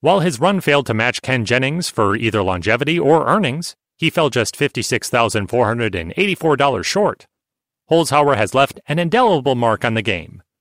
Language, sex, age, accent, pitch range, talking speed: English, male, 30-49, American, 115-165 Hz, 155 wpm